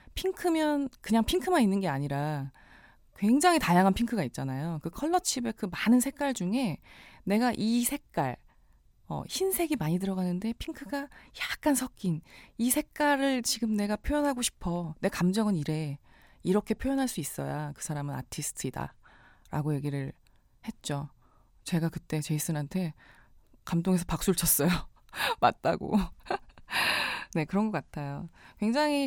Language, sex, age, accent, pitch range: Korean, female, 20-39, native, 145-220 Hz